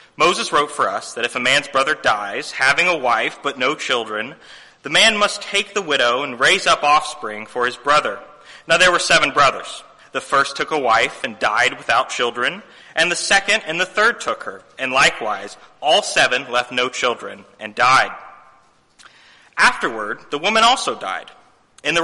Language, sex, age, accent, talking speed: English, male, 30-49, American, 180 wpm